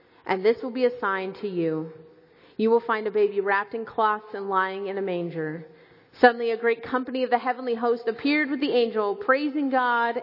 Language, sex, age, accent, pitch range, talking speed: English, female, 30-49, American, 195-265 Hz, 205 wpm